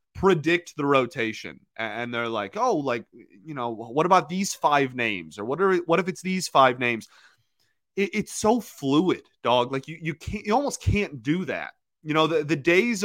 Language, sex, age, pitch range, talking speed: English, male, 30-49, 135-175 Hz, 195 wpm